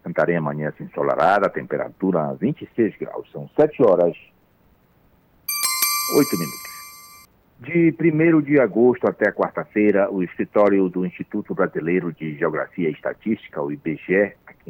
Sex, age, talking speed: male, 60-79, 125 wpm